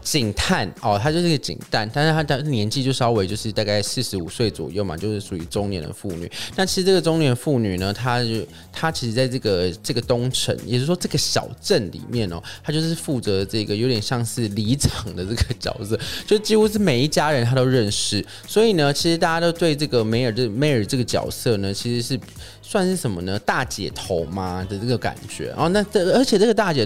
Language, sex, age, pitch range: Chinese, male, 20-39, 105-145 Hz